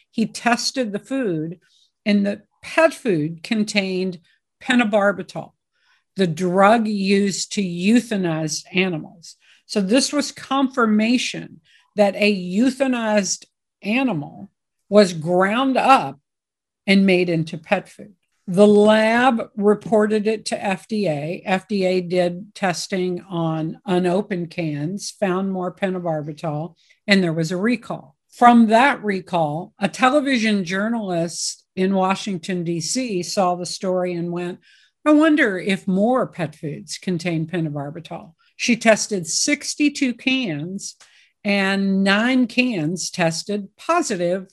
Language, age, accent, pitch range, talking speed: English, 50-69, American, 180-225 Hz, 110 wpm